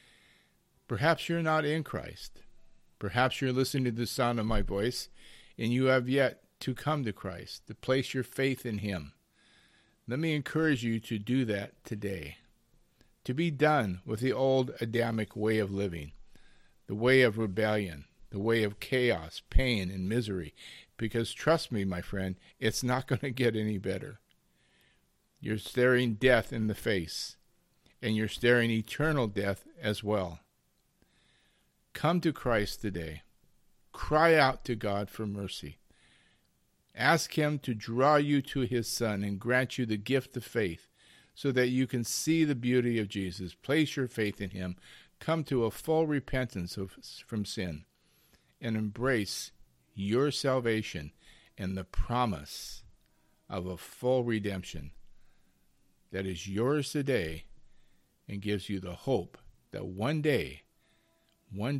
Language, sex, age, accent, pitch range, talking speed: English, male, 50-69, American, 95-130 Hz, 150 wpm